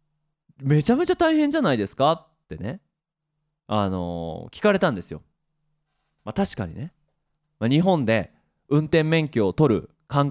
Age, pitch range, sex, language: 20-39, 120-190 Hz, male, Japanese